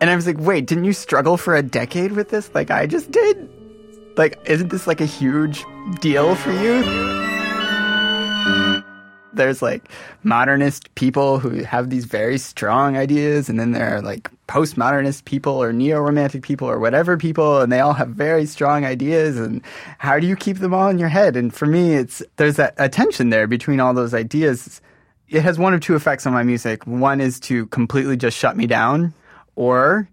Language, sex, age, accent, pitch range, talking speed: English, male, 20-39, American, 125-160 Hz, 190 wpm